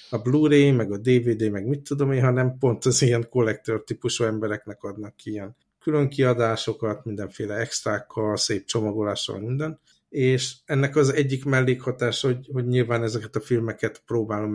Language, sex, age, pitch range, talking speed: Hungarian, male, 50-69, 110-125 Hz, 150 wpm